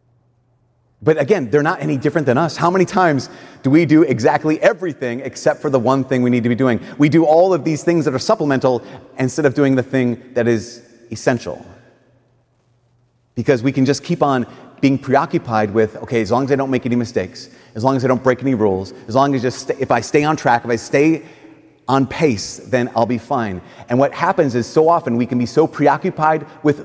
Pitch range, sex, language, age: 125-160 Hz, male, English, 30-49